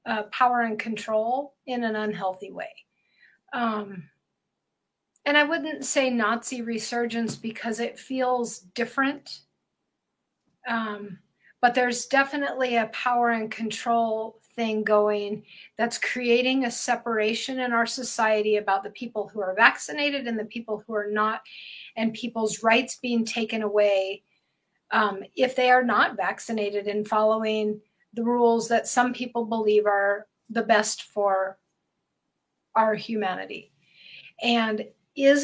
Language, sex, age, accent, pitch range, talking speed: English, female, 40-59, American, 215-255 Hz, 130 wpm